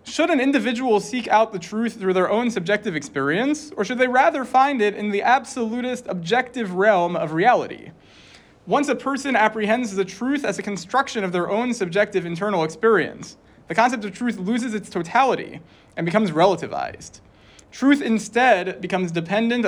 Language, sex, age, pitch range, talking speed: English, male, 30-49, 180-245 Hz, 165 wpm